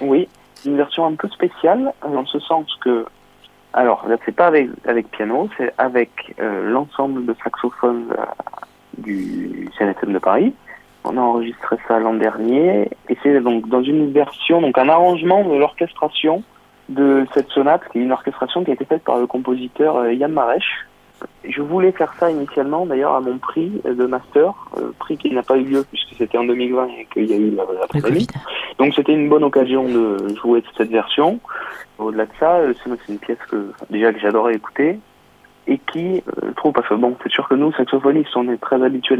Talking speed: 195 wpm